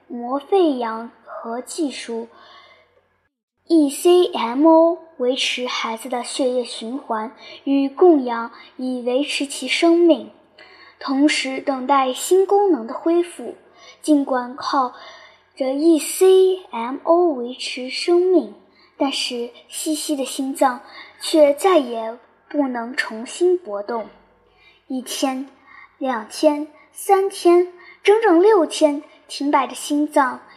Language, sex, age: Chinese, male, 10-29